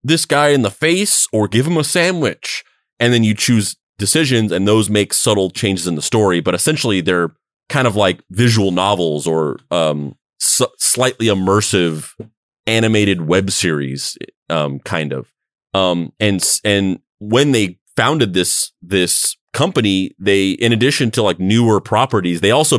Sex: male